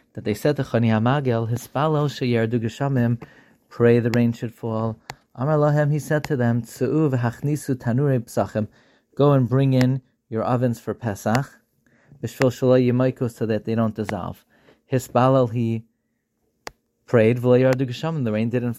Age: 40-59